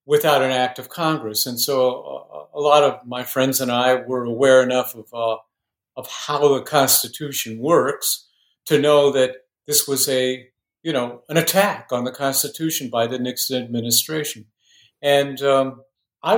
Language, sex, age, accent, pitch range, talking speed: English, male, 50-69, American, 115-145 Hz, 160 wpm